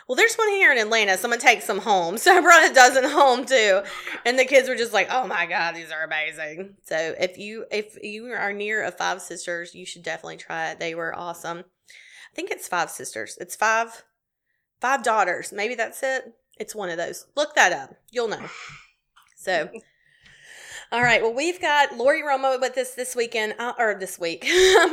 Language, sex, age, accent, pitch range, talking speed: English, female, 20-39, American, 185-260 Hz, 200 wpm